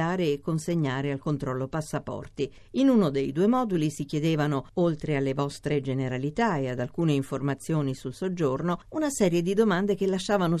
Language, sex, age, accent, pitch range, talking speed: Italian, female, 50-69, native, 145-185 Hz, 160 wpm